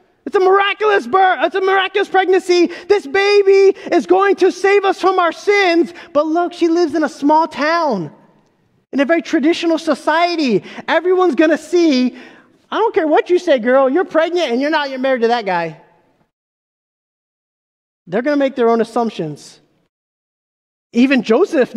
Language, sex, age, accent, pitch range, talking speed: English, male, 20-39, American, 200-325 Hz, 170 wpm